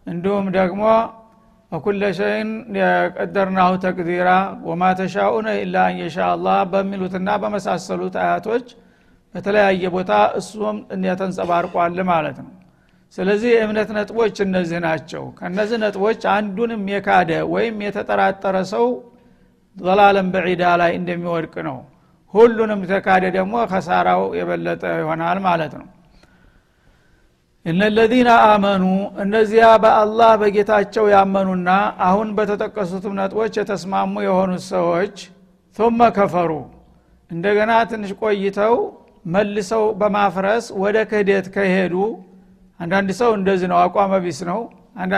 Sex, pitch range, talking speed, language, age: male, 180-210 Hz, 100 wpm, Amharic, 60-79